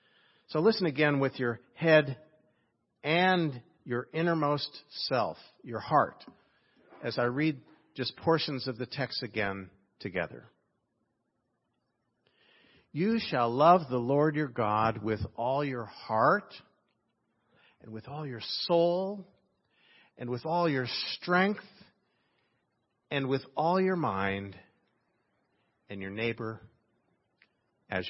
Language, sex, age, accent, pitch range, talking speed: English, male, 50-69, American, 115-150 Hz, 110 wpm